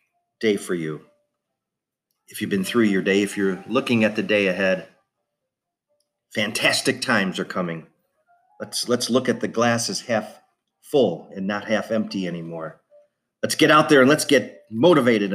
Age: 50-69